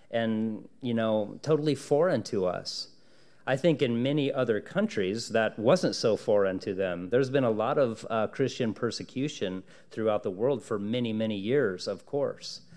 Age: 40-59